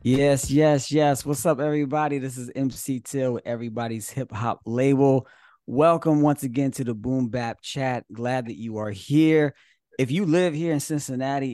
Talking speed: 170 wpm